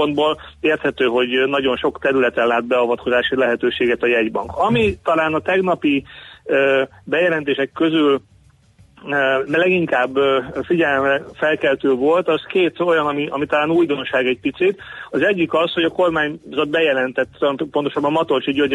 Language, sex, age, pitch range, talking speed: Hungarian, male, 30-49, 130-160 Hz, 130 wpm